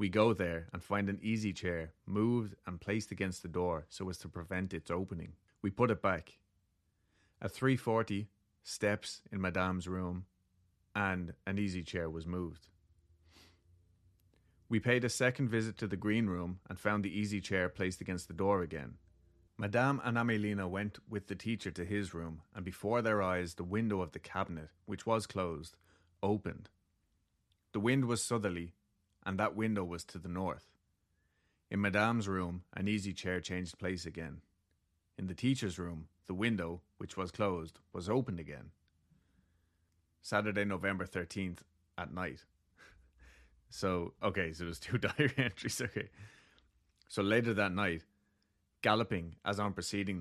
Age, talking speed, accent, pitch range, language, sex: 30-49, 155 wpm, Irish, 85-105 Hz, English, male